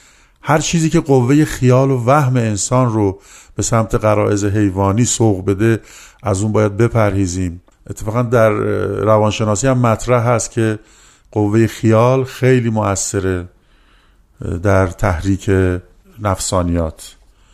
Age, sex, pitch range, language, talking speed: 50-69, male, 100-125 Hz, Persian, 115 wpm